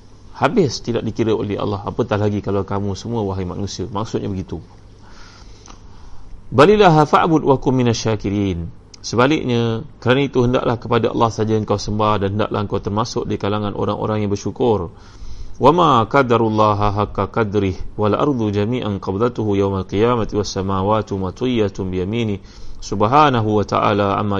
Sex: male